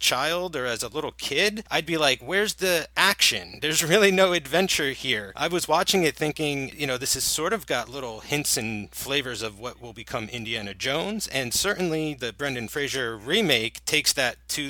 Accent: American